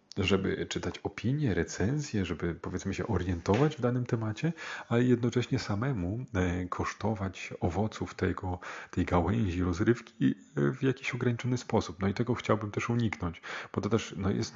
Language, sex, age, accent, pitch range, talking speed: Polish, male, 40-59, native, 85-105 Hz, 145 wpm